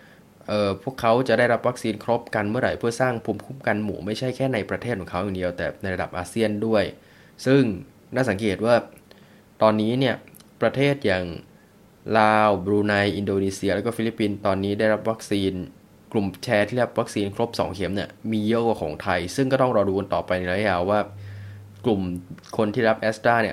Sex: male